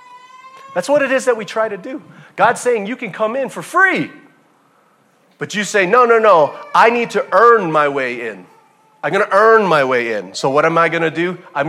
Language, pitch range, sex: English, 155-235 Hz, male